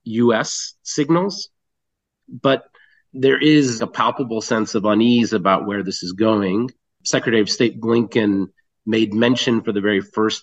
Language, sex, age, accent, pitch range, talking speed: English, male, 30-49, American, 100-125 Hz, 145 wpm